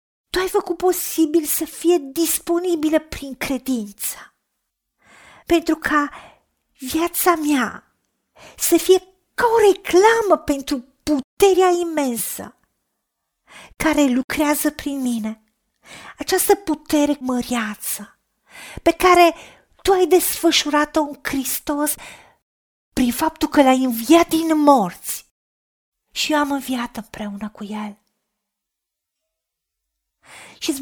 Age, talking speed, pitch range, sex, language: 40-59, 95 wpm, 255-330 Hz, female, Romanian